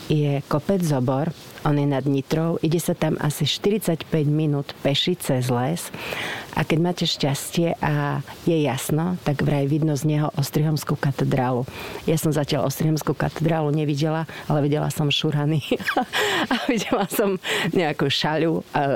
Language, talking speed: Slovak, 145 wpm